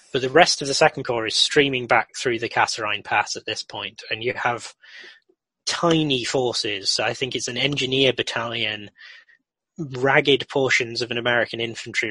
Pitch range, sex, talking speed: 110-140 Hz, male, 170 wpm